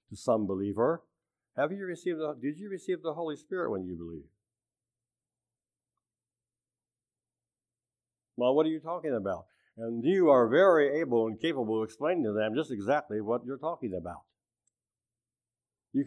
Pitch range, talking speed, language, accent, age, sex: 110-145 Hz, 145 wpm, English, American, 60-79, male